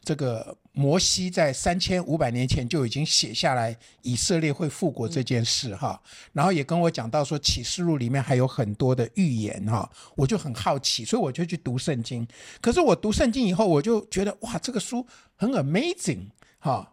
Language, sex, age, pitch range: Chinese, male, 60-79, 130-205 Hz